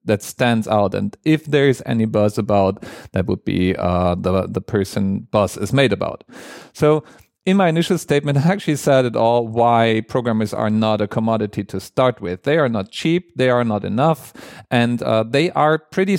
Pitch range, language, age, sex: 110-155 Hz, English, 40-59, male